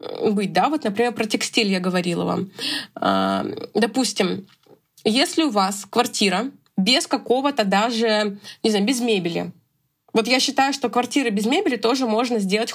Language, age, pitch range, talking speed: Russian, 20-39, 205-250 Hz, 145 wpm